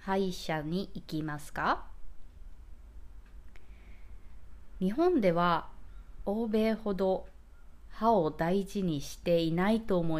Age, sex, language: 20-39, female, Japanese